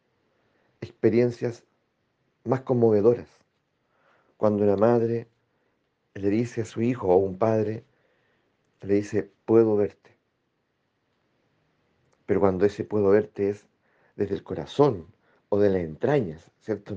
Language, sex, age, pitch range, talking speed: Spanish, male, 40-59, 105-130 Hz, 115 wpm